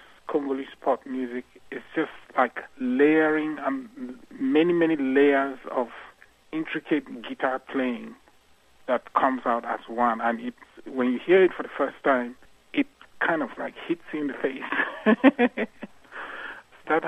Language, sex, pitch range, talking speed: English, male, 120-140 Hz, 135 wpm